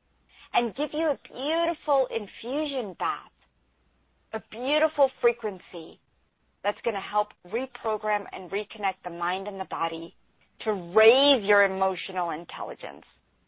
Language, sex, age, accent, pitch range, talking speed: English, female, 40-59, American, 200-265 Hz, 120 wpm